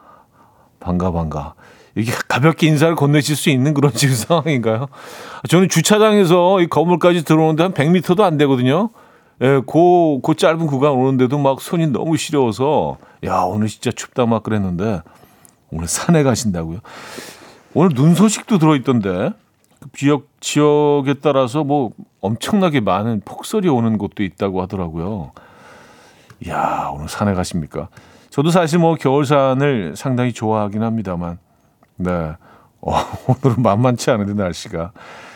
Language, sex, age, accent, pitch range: Korean, male, 40-59, native, 105-150 Hz